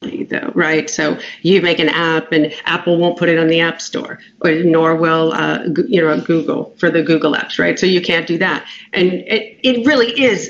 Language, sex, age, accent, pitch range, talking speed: English, female, 40-59, American, 180-240 Hz, 210 wpm